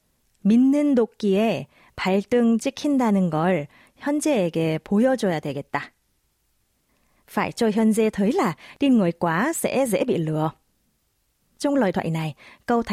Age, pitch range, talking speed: 20-39, 170-230 Hz, 80 wpm